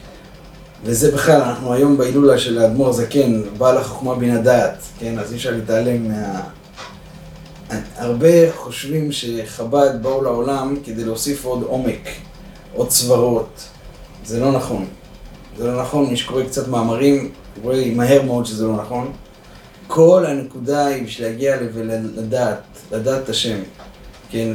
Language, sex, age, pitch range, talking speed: Hebrew, male, 30-49, 120-150 Hz, 135 wpm